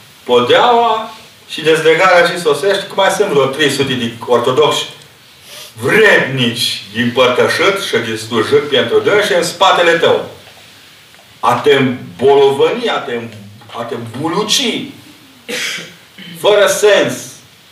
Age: 50-69